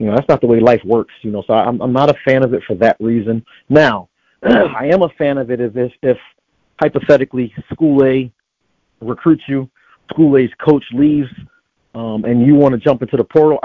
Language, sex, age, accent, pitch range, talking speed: English, male, 40-59, American, 120-145 Hz, 210 wpm